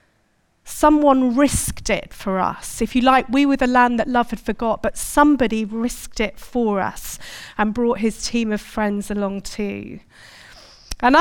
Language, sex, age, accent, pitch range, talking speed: English, female, 40-59, British, 225-280 Hz, 165 wpm